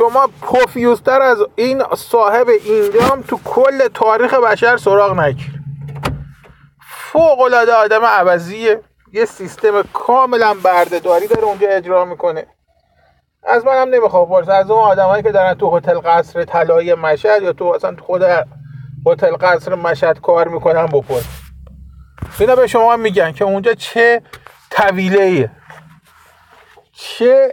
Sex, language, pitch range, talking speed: male, Persian, 170-235 Hz, 125 wpm